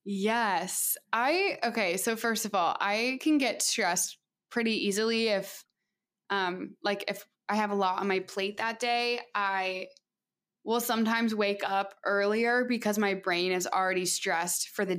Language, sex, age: English, female, 20-39